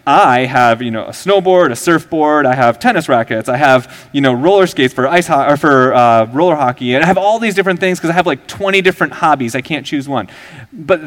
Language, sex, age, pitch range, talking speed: English, male, 30-49, 125-170 Hz, 245 wpm